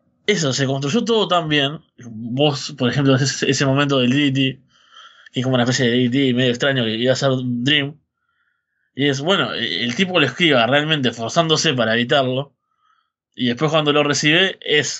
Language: Spanish